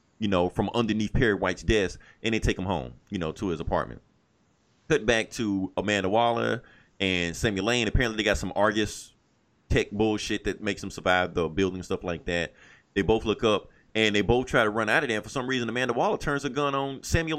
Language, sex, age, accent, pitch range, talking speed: English, male, 30-49, American, 100-120 Hz, 225 wpm